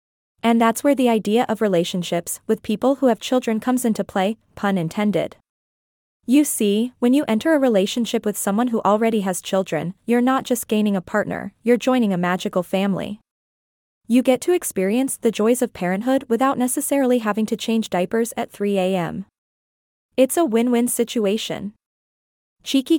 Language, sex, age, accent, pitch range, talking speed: English, female, 20-39, American, 200-250 Hz, 160 wpm